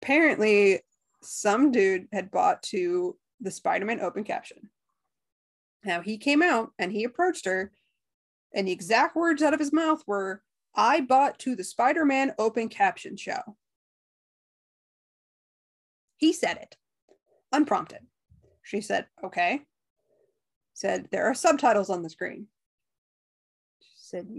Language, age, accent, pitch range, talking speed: English, 20-39, American, 195-285 Hz, 125 wpm